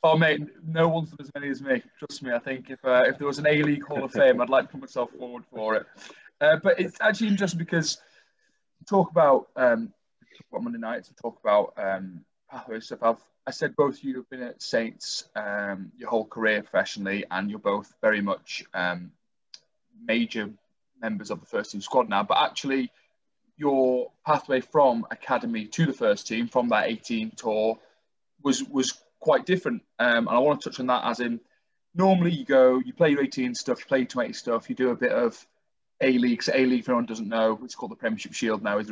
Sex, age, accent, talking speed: male, 20-39, British, 215 wpm